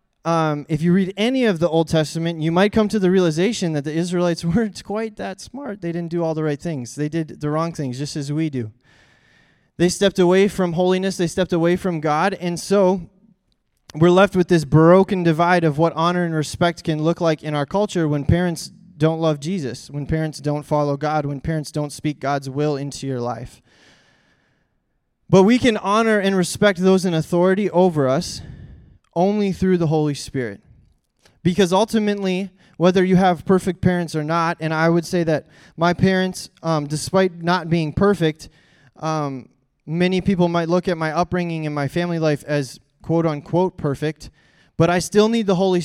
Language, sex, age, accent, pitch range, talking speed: English, male, 20-39, American, 150-185 Hz, 190 wpm